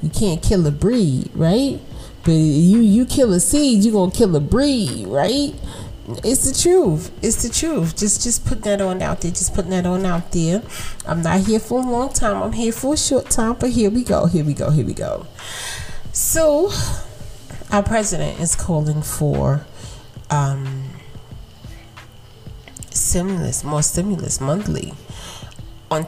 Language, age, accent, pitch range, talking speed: English, 30-49, American, 135-195 Hz, 170 wpm